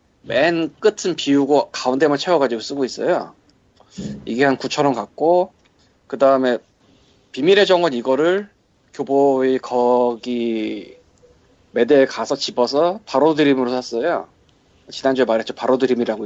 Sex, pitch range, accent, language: male, 130-165 Hz, native, Korean